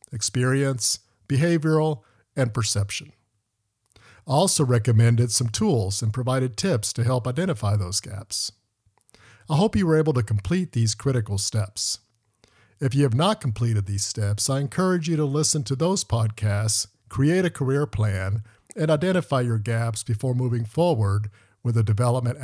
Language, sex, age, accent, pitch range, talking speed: English, male, 50-69, American, 105-140 Hz, 150 wpm